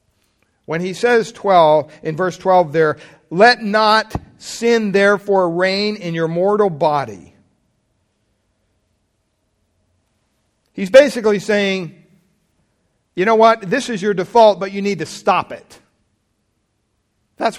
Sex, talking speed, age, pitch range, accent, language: male, 115 wpm, 50-69, 145-210 Hz, American, English